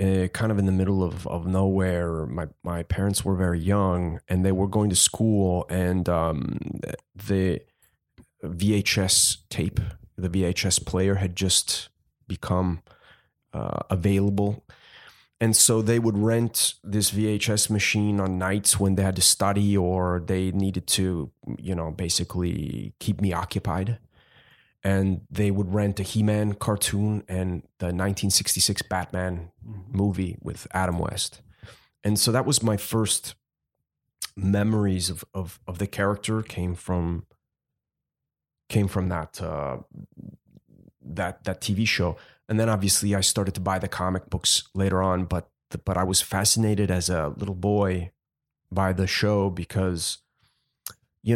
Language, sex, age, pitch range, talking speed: French, male, 30-49, 90-105 Hz, 145 wpm